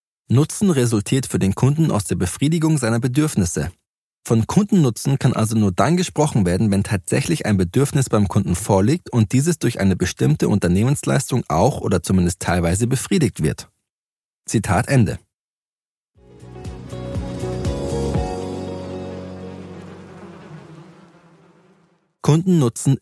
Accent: German